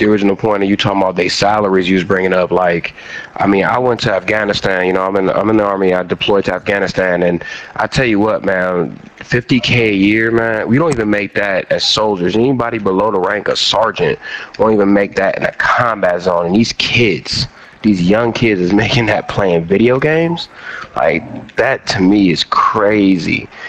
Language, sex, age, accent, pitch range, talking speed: English, male, 30-49, American, 95-110 Hz, 210 wpm